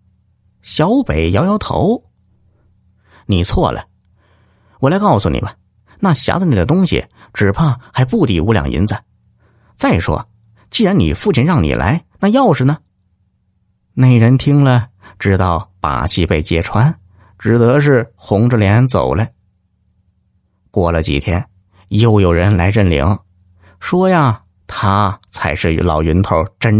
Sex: male